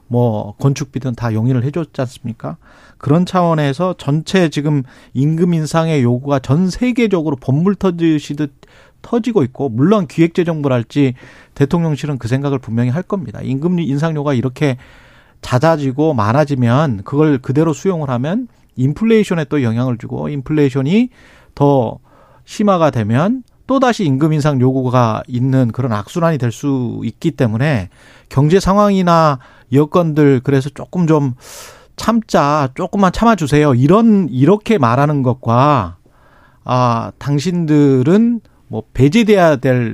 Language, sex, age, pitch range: Korean, male, 40-59, 125-165 Hz